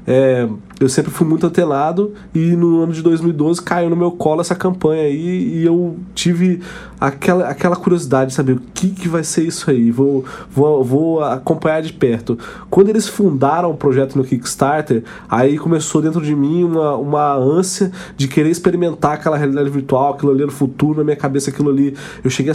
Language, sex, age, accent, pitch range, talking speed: Portuguese, male, 20-39, Brazilian, 135-170 Hz, 185 wpm